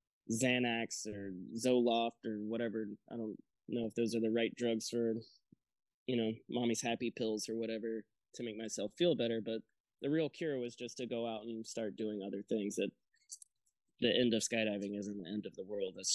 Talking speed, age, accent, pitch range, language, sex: 195 wpm, 20-39, American, 105-120 Hz, English, male